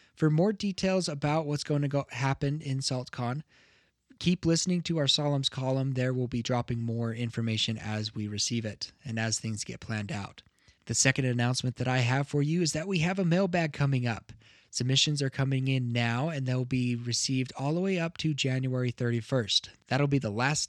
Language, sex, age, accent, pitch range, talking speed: English, male, 20-39, American, 120-160 Hz, 195 wpm